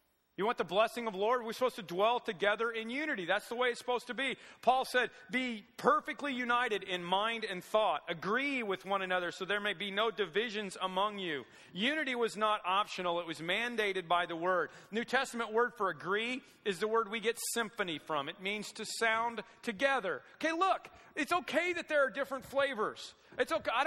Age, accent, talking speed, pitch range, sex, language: 40-59, American, 205 wpm, 185-250 Hz, male, English